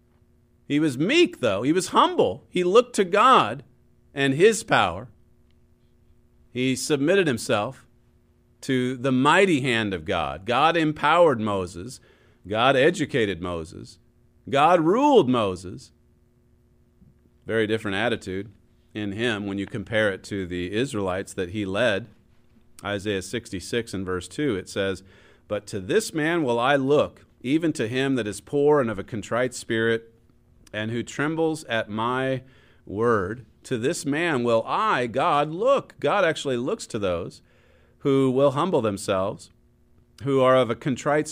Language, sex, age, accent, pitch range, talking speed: English, male, 40-59, American, 100-140 Hz, 145 wpm